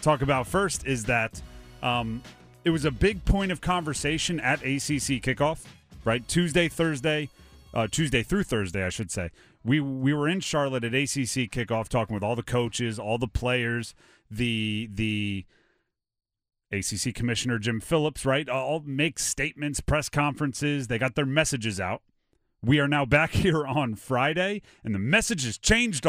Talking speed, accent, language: 165 wpm, American, English